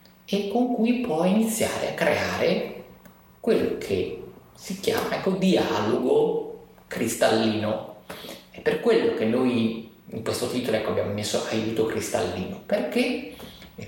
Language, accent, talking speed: Italian, native, 125 wpm